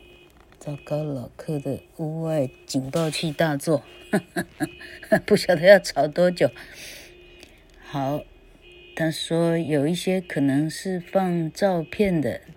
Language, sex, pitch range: Chinese, female, 145-180 Hz